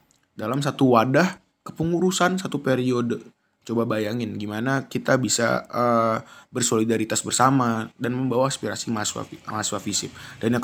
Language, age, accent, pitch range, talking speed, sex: Indonesian, 20-39, native, 115-155 Hz, 125 wpm, male